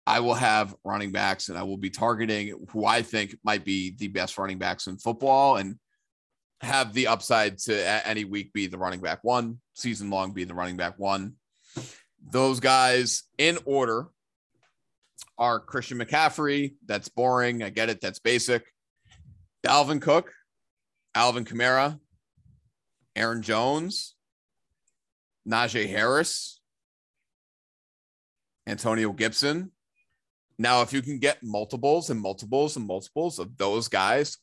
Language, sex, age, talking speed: English, male, 30-49, 135 wpm